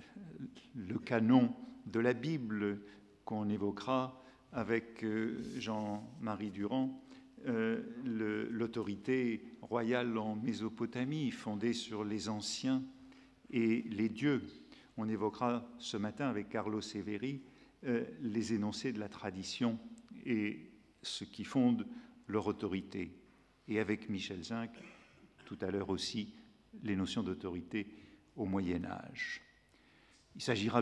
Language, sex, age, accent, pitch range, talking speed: French, male, 50-69, French, 100-120 Hz, 110 wpm